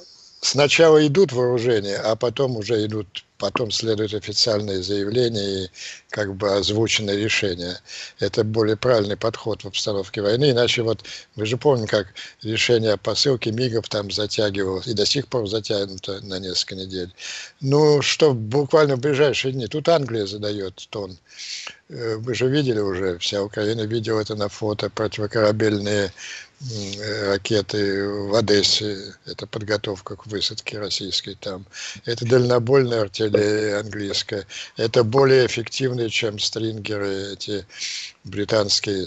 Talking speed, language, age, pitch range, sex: 130 wpm, Russian, 60-79, 100-125 Hz, male